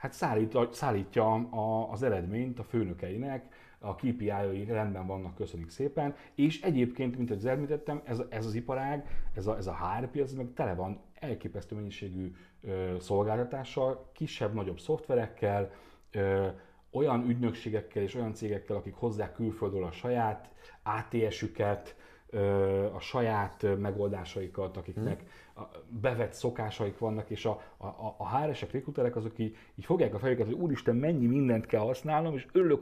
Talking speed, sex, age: 135 wpm, male, 30-49